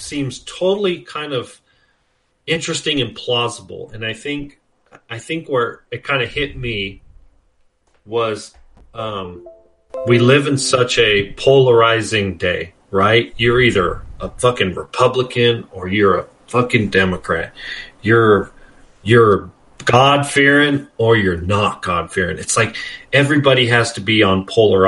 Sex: male